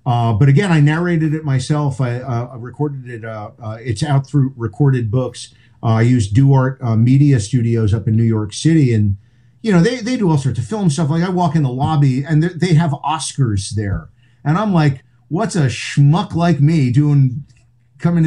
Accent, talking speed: American, 205 wpm